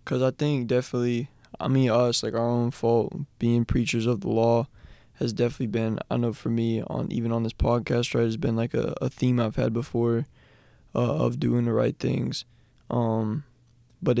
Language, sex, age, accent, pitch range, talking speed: English, male, 20-39, American, 115-135 Hz, 195 wpm